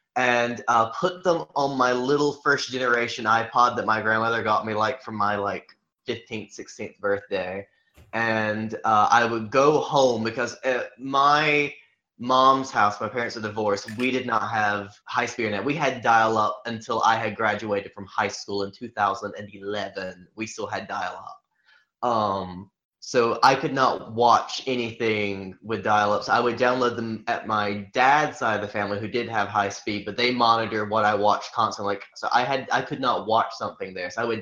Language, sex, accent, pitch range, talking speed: English, male, American, 105-125 Hz, 180 wpm